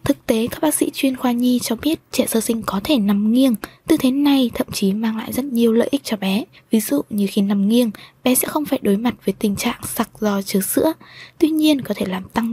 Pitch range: 205-255 Hz